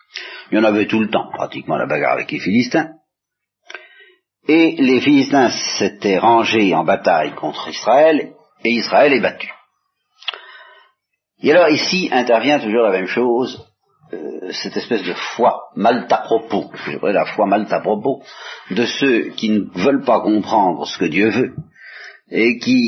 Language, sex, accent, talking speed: French, male, French, 155 wpm